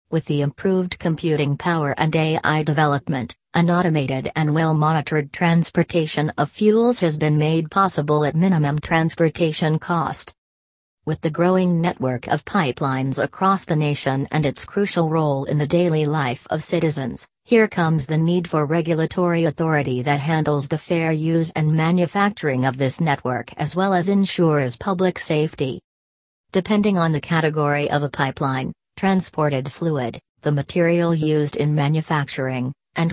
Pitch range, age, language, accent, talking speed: 145-170 Hz, 40-59, English, American, 145 wpm